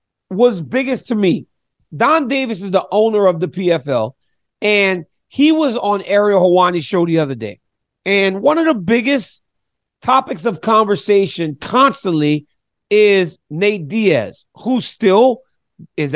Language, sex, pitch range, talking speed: English, male, 180-235 Hz, 135 wpm